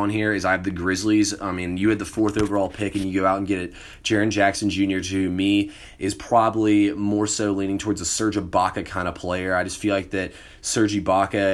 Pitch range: 90-100 Hz